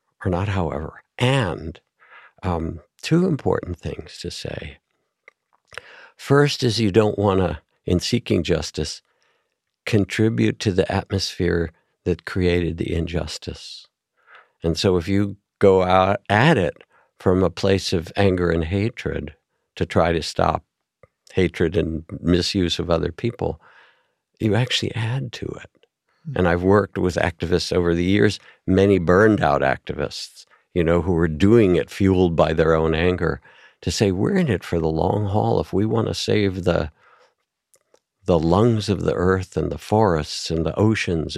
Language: English